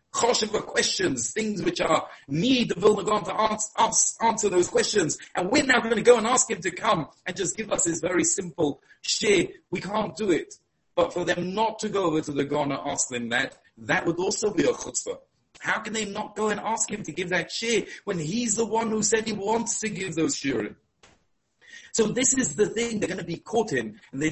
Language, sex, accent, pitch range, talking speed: English, male, British, 145-220 Hz, 235 wpm